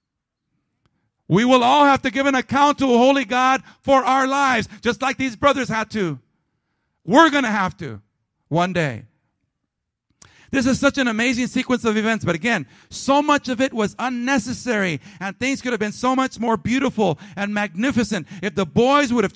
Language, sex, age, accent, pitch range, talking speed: English, male, 50-69, American, 140-225 Hz, 185 wpm